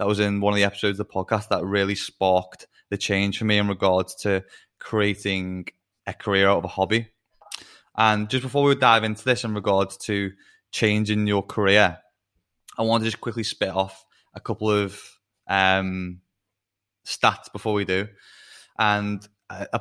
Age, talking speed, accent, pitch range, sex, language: 20-39, 175 wpm, British, 95-110 Hz, male, English